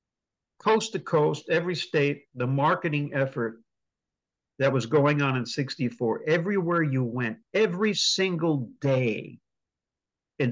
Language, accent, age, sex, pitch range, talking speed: English, American, 50-69, male, 125-175 Hz, 120 wpm